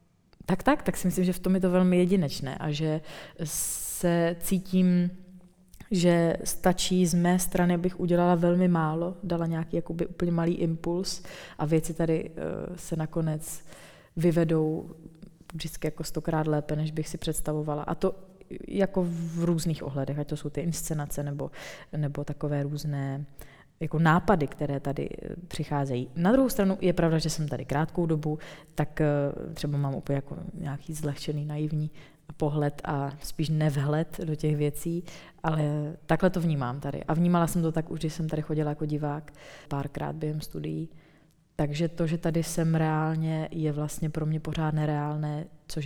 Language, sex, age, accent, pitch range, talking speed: Czech, female, 20-39, native, 150-175 Hz, 160 wpm